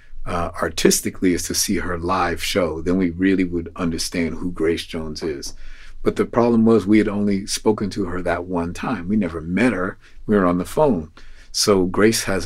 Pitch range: 90-105 Hz